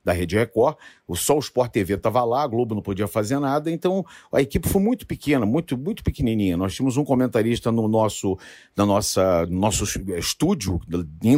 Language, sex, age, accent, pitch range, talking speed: Portuguese, male, 50-69, Brazilian, 105-160 Hz, 185 wpm